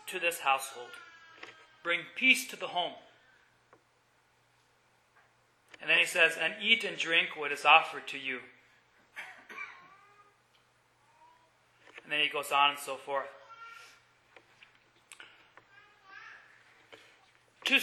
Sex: male